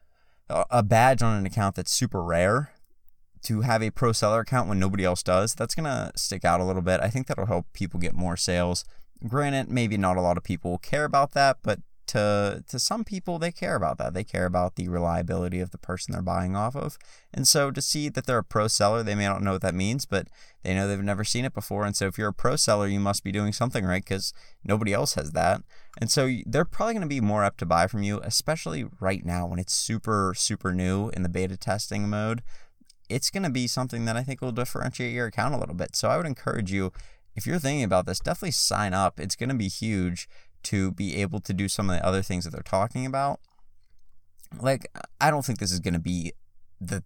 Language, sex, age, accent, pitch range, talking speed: English, male, 20-39, American, 90-120 Hz, 240 wpm